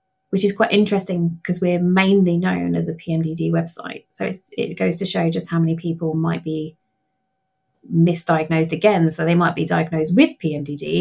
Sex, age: female, 20-39